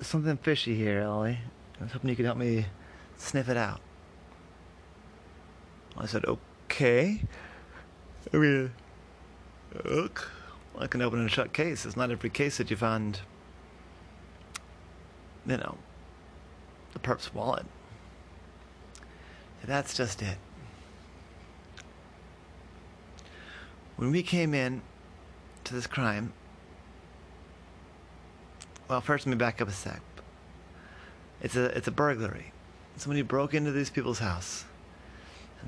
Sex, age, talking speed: male, 30-49, 110 wpm